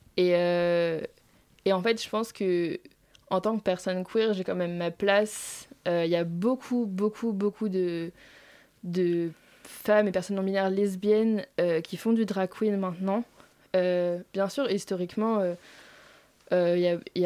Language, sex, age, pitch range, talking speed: French, female, 20-39, 175-210 Hz, 175 wpm